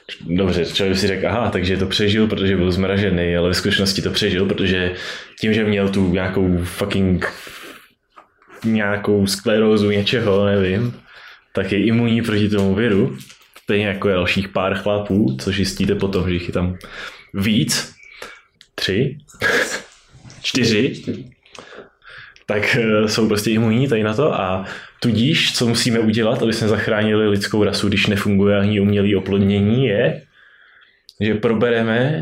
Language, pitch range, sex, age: Czech, 95-115 Hz, male, 20-39